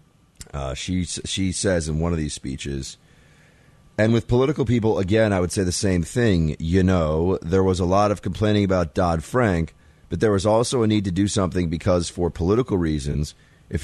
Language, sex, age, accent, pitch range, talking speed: English, male, 30-49, American, 75-95 Hz, 190 wpm